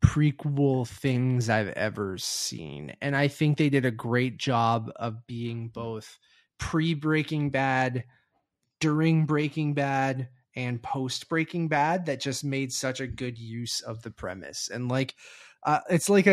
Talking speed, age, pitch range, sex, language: 145 wpm, 20-39, 125-155 Hz, male, English